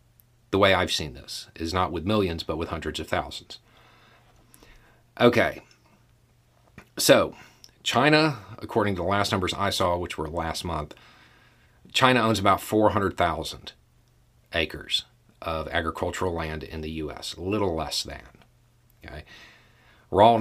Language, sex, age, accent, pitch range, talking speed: English, male, 40-59, American, 85-115 Hz, 130 wpm